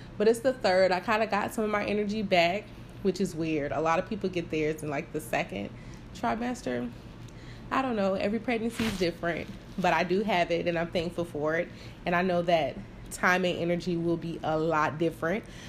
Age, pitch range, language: 20-39, 185-230 Hz, English